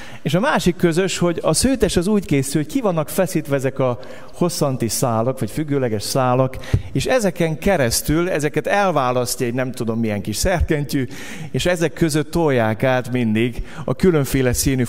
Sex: male